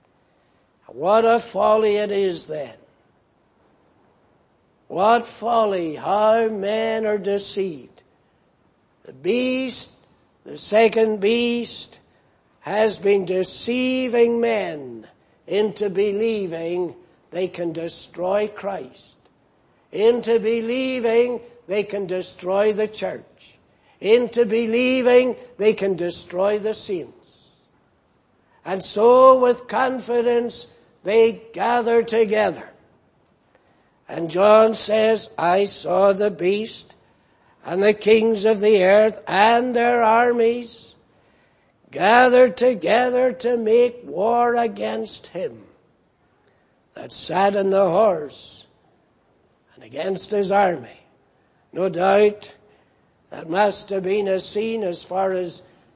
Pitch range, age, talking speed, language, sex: 195-235 Hz, 60-79, 100 wpm, English, male